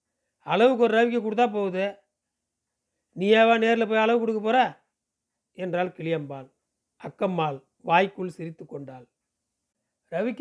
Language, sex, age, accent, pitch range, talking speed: Tamil, male, 40-59, native, 165-220 Hz, 105 wpm